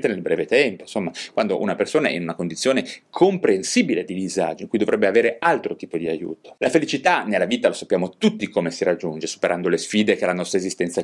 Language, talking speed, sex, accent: Italian, 210 wpm, male, native